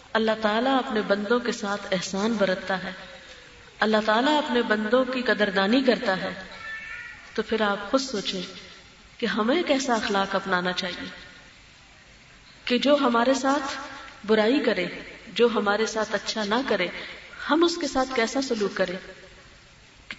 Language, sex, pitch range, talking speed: Urdu, female, 205-255 Hz, 145 wpm